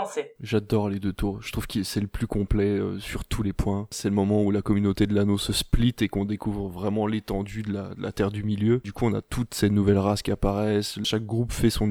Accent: French